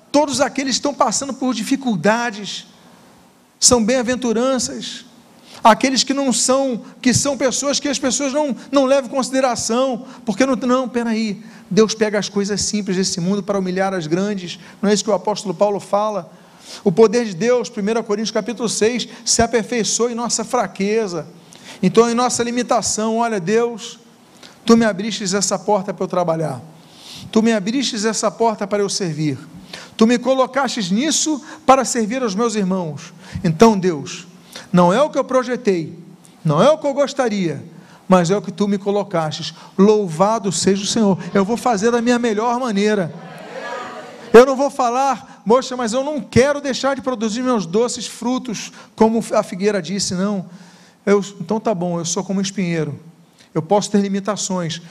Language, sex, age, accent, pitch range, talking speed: Portuguese, male, 40-59, Brazilian, 195-245 Hz, 170 wpm